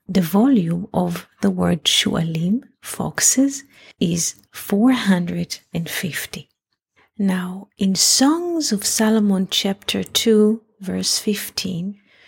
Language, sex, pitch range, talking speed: English, female, 180-215 Hz, 90 wpm